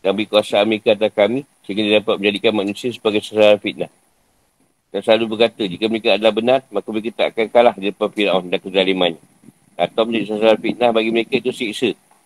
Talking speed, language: 185 wpm, Malay